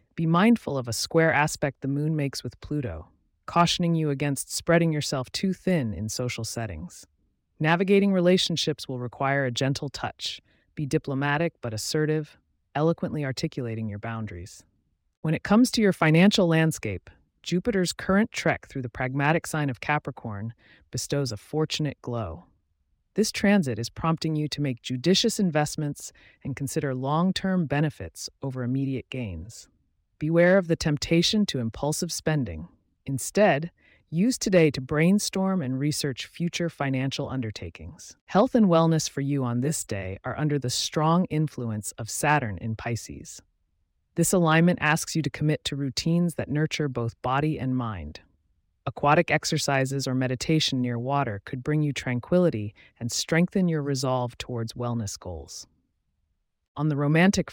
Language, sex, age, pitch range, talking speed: English, female, 30-49, 115-160 Hz, 145 wpm